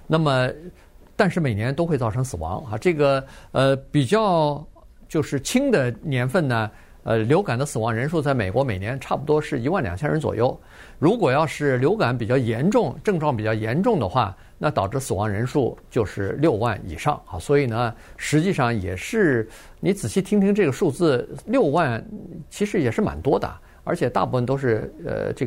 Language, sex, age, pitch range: Chinese, male, 50-69, 115-160 Hz